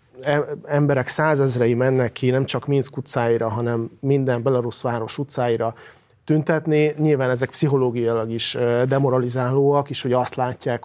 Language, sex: Hungarian, male